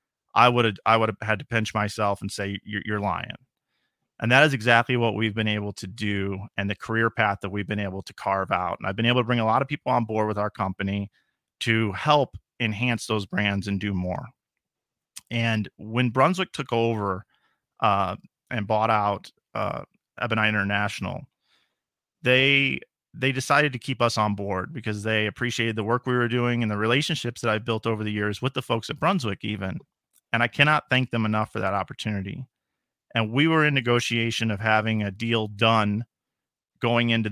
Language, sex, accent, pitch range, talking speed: English, male, American, 105-120 Hz, 200 wpm